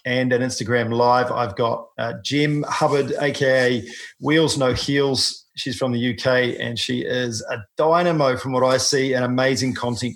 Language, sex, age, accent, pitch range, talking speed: English, male, 40-59, Australian, 120-140 Hz, 170 wpm